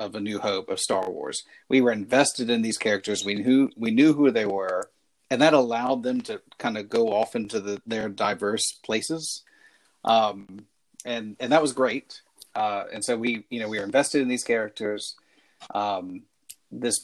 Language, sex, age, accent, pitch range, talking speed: English, male, 40-59, American, 110-155 Hz, 195 wpm